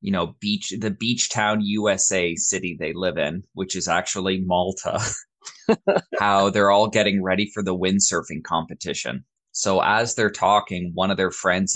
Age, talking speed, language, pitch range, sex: 20-39, 165 wpm, English, 90-105 Hz, male